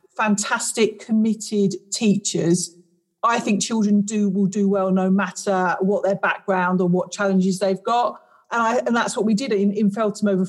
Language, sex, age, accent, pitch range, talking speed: English, female, 40-59, British, 200-230 Hz, 175 wpm